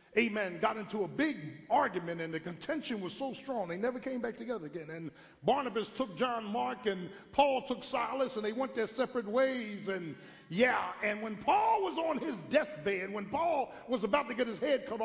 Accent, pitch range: American, 210-270 Hz